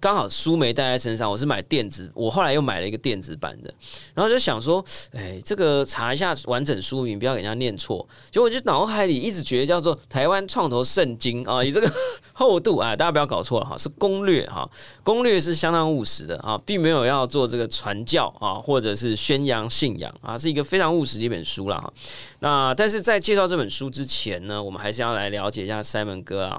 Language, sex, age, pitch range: Chinese, male, 20-39, 105-150 Hz